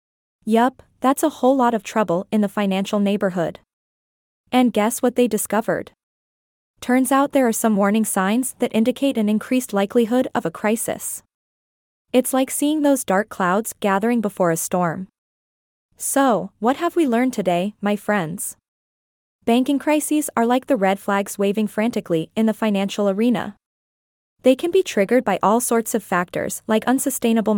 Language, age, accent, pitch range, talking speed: English, 20-39, American, 195-250 Hz, 160 wpm